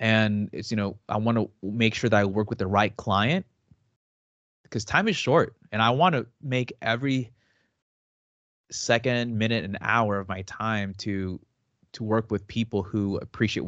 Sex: male